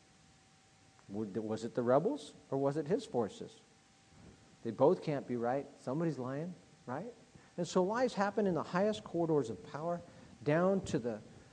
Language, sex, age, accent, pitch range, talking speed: English, male, 40-59, American, 120-170 Hz, 155 wpm